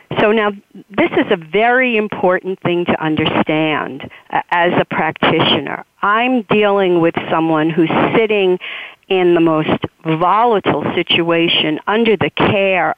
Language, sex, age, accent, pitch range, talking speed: English, female, 50-69, American, 180-230 Hz, 125 wpm